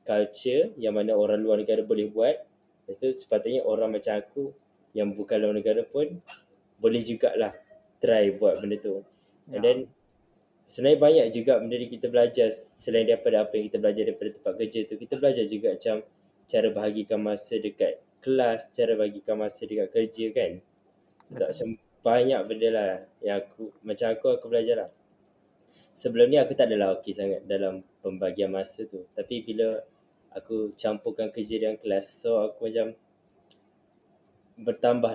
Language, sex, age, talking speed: Malay, male, 10-29, 155 wpm